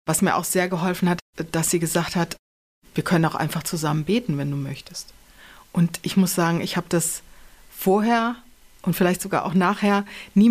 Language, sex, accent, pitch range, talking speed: German, female, German, 170-200 Hz, 190 wpm